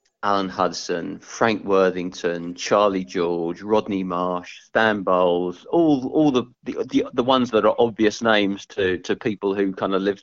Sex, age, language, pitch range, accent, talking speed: male, 40-59, English, 90-105 Hz, British, 155 wpm